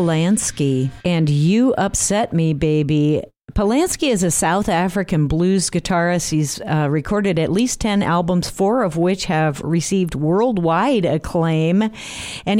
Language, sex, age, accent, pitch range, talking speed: English, female, 50-69, American, 155-195 Hz, 135 wpm